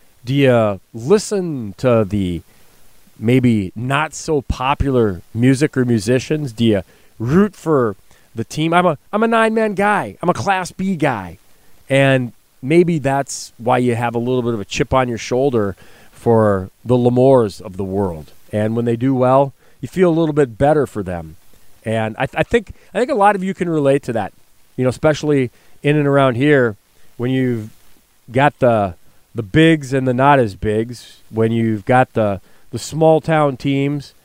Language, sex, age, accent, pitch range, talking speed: English, male, 40-59, American, 115-150 Hz, 185 wpm